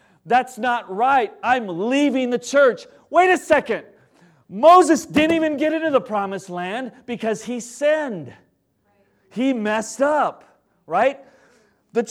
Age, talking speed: 40-59, 130 wpm